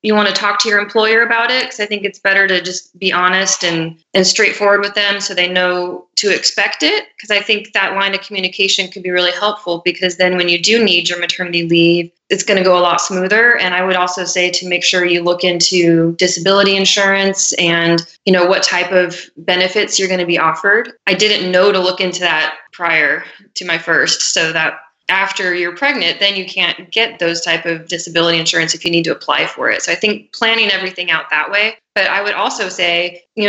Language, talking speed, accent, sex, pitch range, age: English, 230 wpm, American, female, 175-205 Hz, 20-39